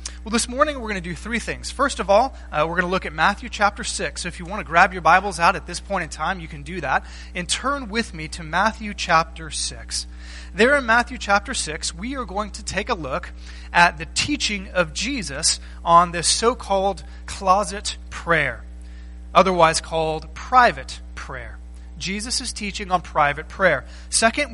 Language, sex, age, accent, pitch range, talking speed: English, male, 30-49, American, 130-205 Hz, 195 wpm